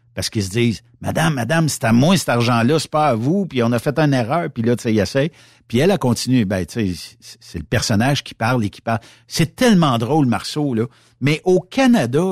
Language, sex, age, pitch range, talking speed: French, male, 60-79, 110-135 Hz, 245 wpm